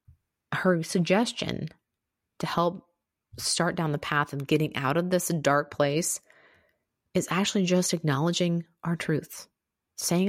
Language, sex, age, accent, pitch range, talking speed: English, female, 30-49, American, 145-175 Hz, 130 wpm